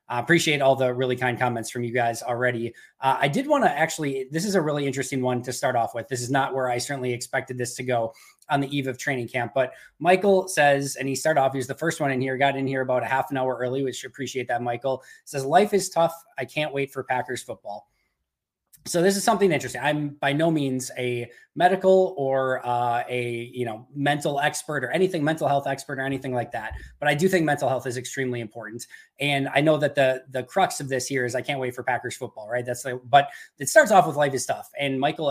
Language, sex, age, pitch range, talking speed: English, male, 20-39, 125-145 Hz, 250 wpm